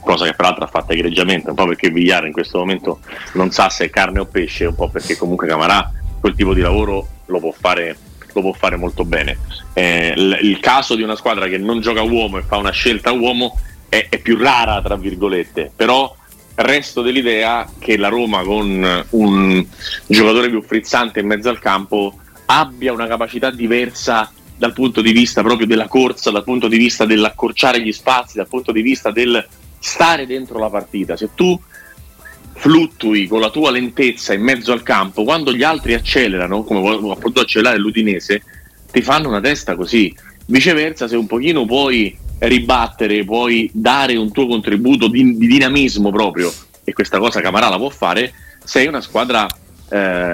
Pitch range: 95-120 Hz